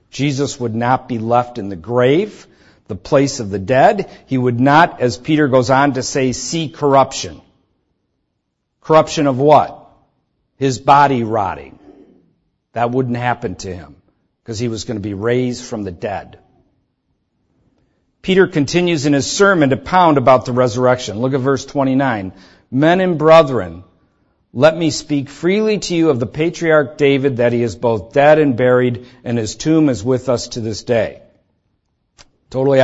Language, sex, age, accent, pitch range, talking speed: English, male, 50-69, American, 115-145 Hz, 165 wpm